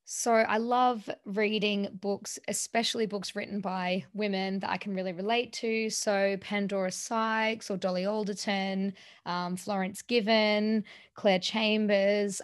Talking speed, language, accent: 130 wpm, English, Australian